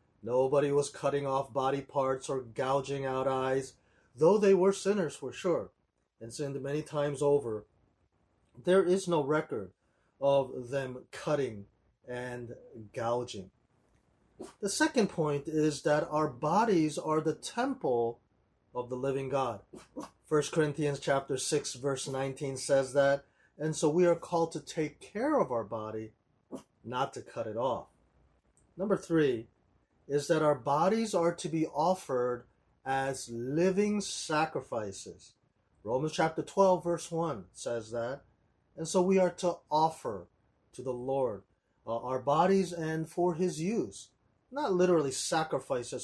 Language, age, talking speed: English, 30-49, 140 wpm